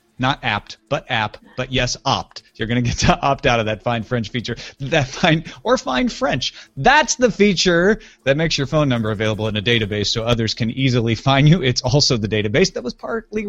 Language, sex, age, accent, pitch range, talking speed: English, male, 30-49, American, 115-185 Hz, 220 wpm